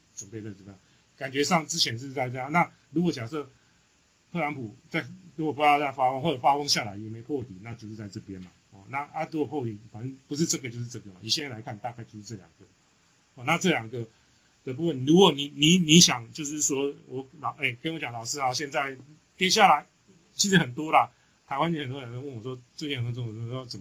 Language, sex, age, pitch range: Chinese, male, 30-49, 115-165 Hz